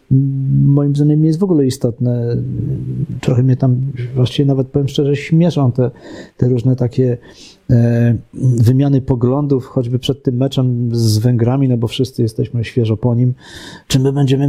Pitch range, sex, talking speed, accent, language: 110-145 Hz, male, 155 wpm, native, Polish